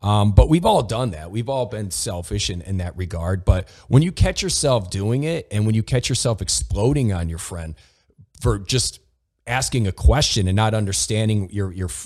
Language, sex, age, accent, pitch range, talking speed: English, male, 40-59, American, 95-125 Hz, 200 wpm